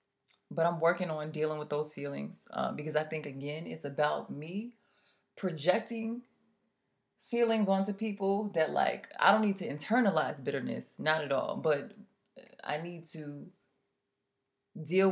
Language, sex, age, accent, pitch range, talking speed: English, female, 20-39, American, 145-185 Hz, 145 wpm